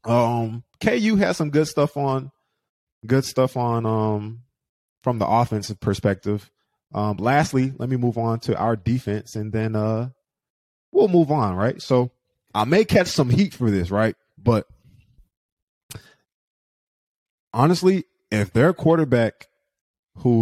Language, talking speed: English, 135 wpm